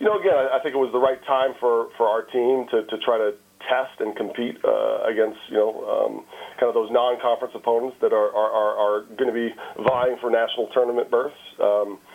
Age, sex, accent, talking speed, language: 40-59, male, American, 220 wpm, English